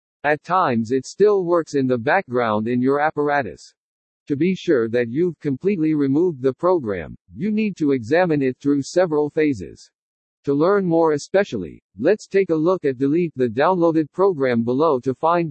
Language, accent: English, American